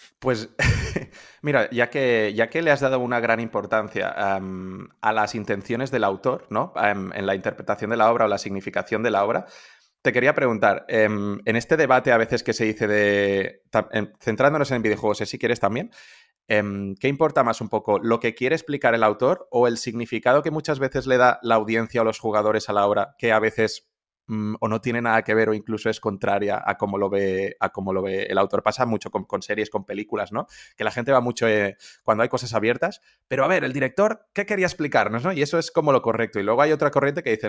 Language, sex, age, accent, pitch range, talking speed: Spanish, male, 30-49, Spanish, 105-130 Hz, 225 wpm